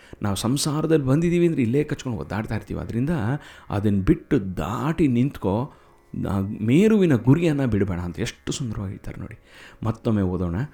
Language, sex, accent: Kannada, male, native